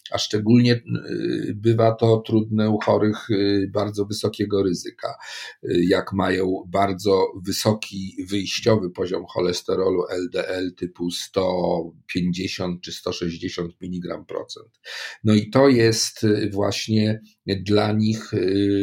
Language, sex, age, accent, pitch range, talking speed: Polish, male, 50-69, native, 100-115 Hz, 100 wpm